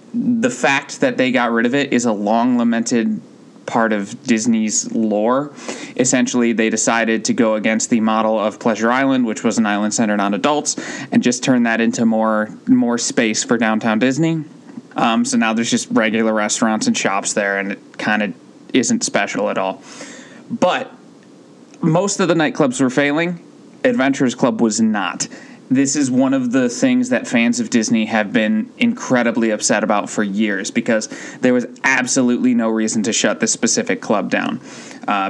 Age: 20-39